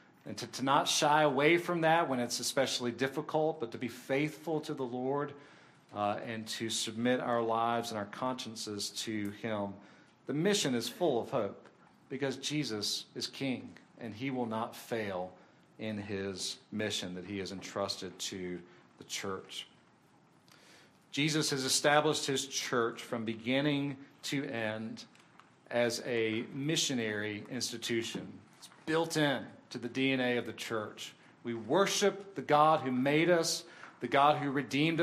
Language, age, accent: English, 40-59, American